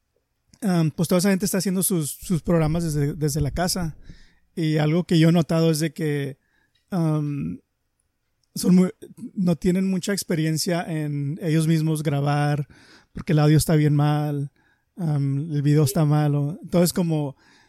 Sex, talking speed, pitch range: male, 145 wpm, 150-175 Hz